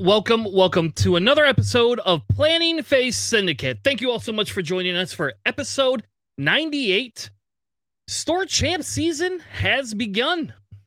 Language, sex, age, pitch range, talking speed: English, male, 30-49, 135-220 Hz, 140 wpm